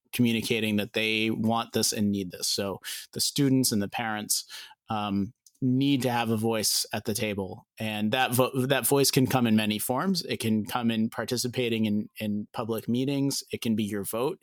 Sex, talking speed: male, 195 wpm